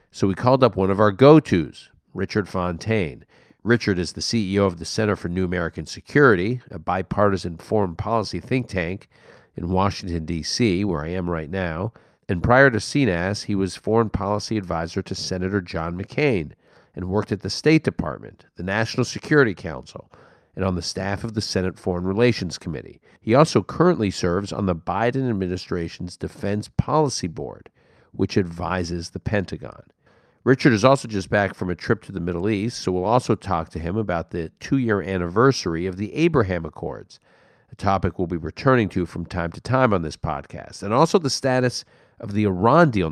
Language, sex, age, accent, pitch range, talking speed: English, male, 50-69, American, 90-115 Hz, 180 wpm